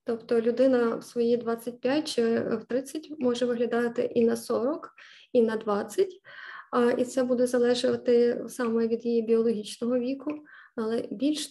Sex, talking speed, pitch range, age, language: female, 140 wpm, 235-255 Hz, 20-39, Ukrainian